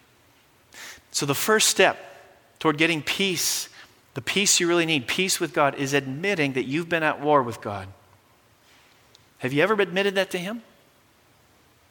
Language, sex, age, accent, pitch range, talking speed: English, male, 40-59, American, 125-185 Hz, 155 wpm